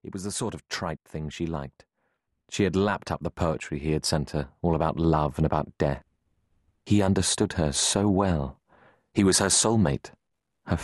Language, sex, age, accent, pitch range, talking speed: English, male, 40-59, British, 75-100 Hz, 195 wpm